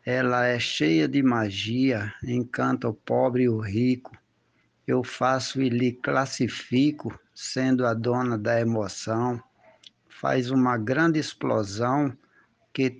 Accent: Brazilian